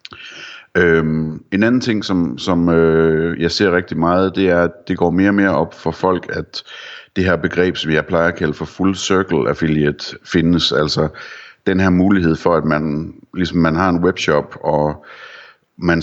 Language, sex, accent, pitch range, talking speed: Danish, male, native, 80-90 Hz, 185 wpm